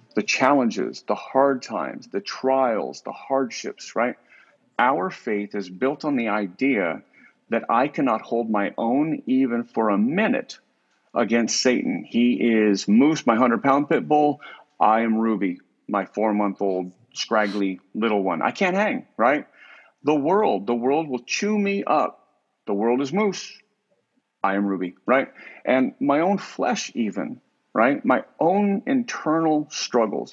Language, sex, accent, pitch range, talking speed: English, male, American, 105-155 Hz, 145 wpm